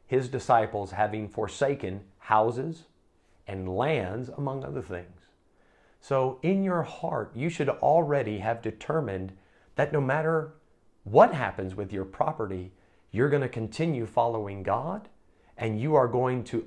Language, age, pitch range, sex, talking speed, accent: English, 40-59, 100-140 Hz, male, 135 wpm, American